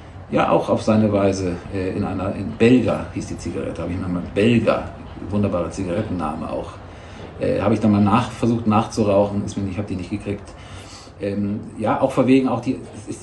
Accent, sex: German, male